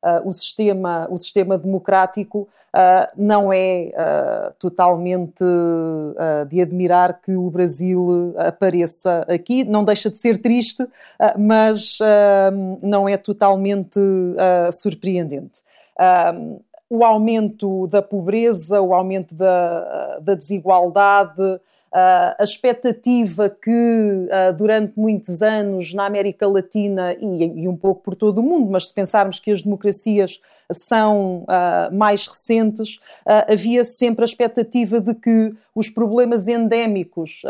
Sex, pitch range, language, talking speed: female, 185-220 Hz, Portuguese, 110 wpm